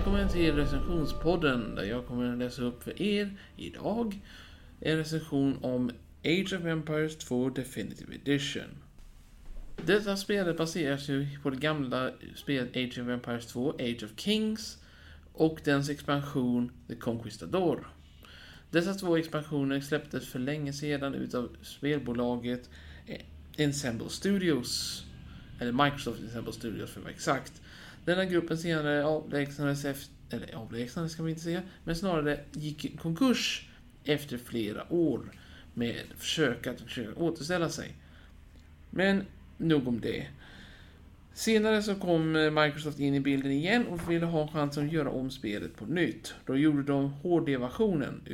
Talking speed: 140 wpm